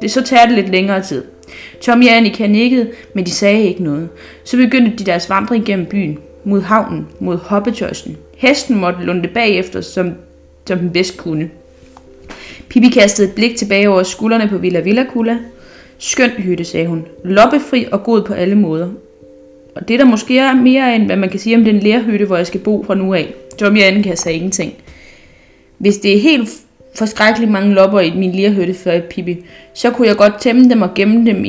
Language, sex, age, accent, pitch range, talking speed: Danish, female, 20-39, native, 180-230 Hz, 205 wpm